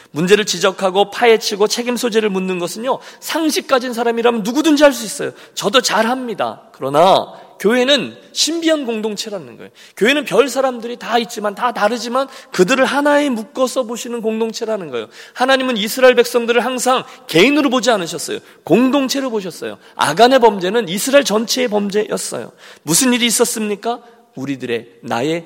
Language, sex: Korean, male